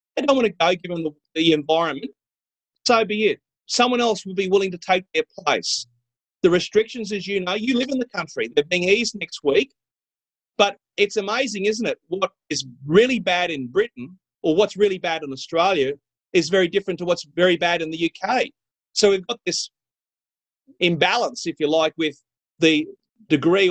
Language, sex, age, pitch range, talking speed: English, male, 40-59, 165-215 Hz, 185 wpm